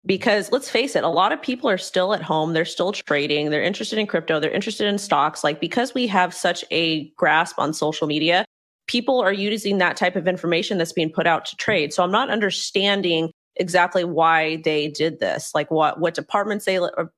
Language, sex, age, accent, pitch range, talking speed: English, female, 30-49, American, 160-210 Hz, 215 wpm